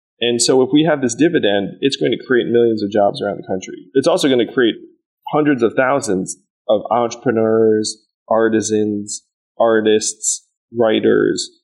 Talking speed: 155 wpm